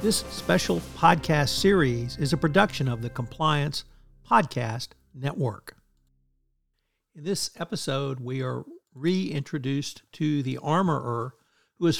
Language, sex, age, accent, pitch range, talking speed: English, male, 60-79, American, 130-165 Hz, 115 wpm